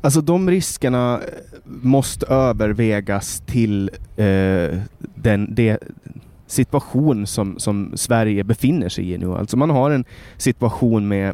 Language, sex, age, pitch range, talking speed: Swedish, male, 20-39, 100-120 Hz, 120 wpm